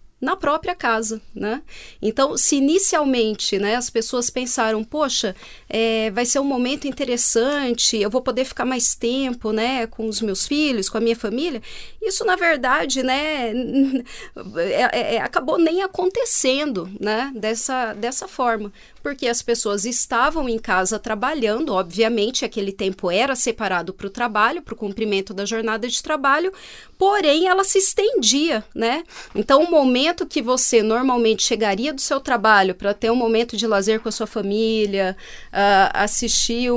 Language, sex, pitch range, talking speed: Portuguese, female, 220-275 Hz, 150 wpm